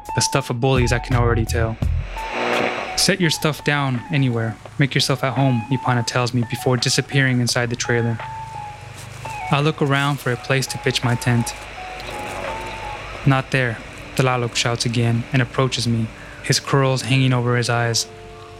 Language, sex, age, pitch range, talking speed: English, male, 20-39, 115-135 Hz, 160 wpm